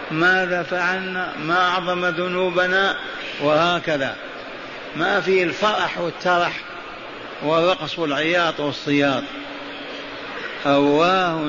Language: Arabic